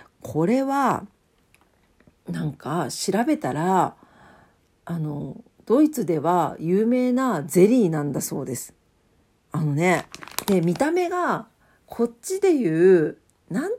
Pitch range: 165-260 Hz